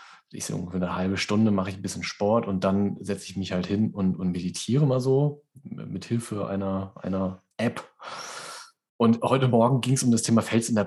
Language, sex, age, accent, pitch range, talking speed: German, male, 30-49, German, 100-130 Hz, 210 wpm